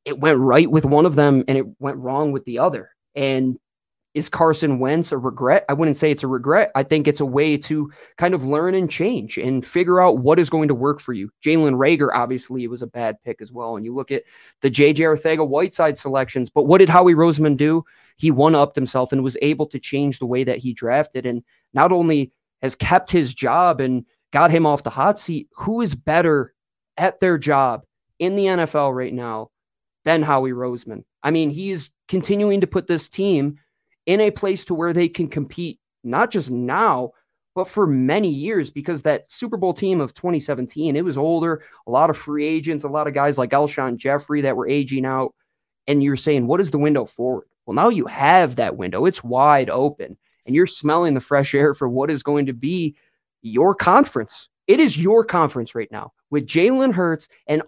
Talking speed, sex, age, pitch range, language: 210 wpm, male, 20-39, 130-170 Hz, English